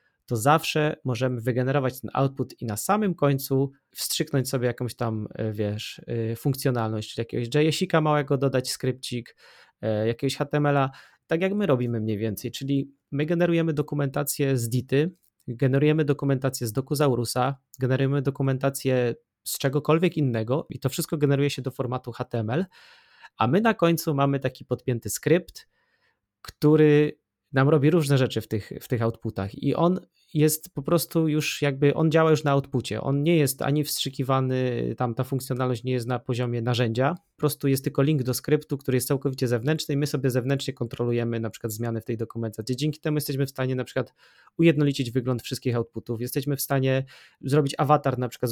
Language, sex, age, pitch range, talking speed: Polish, male, 30-49, 125-150 Hz, 170 wpm